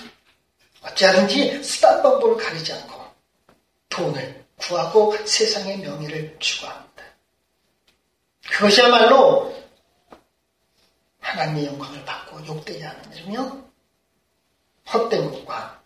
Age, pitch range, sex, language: 40-59, 160-250 Hz, male, Korean